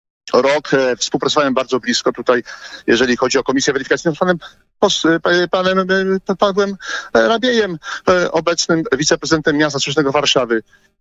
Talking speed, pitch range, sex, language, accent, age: 145 wpm, 135-195 Hz, male, Polish, native, 40-59